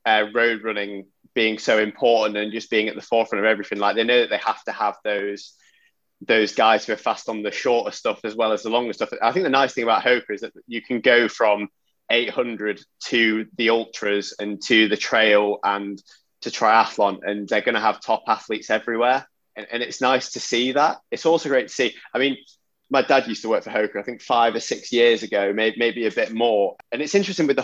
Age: 20-39